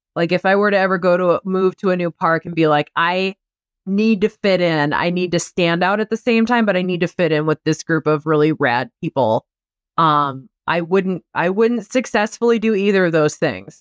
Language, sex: English, female